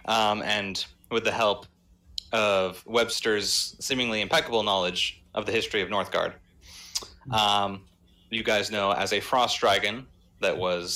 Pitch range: 90-115 Hz